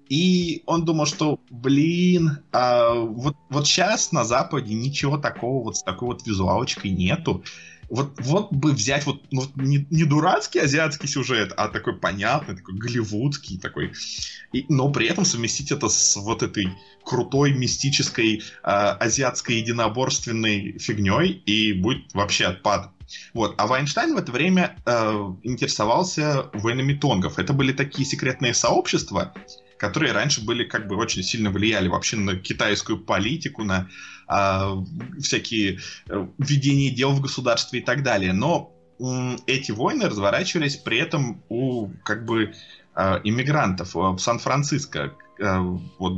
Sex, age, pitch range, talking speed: male, 20-39, 110-150 Hz, 140 wpm